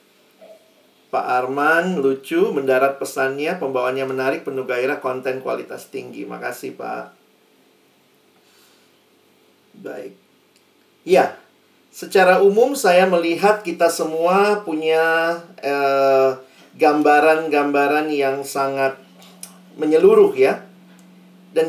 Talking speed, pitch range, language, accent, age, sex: 85 wpm, 140-185 Hz, Indonesian, native, 40-59, male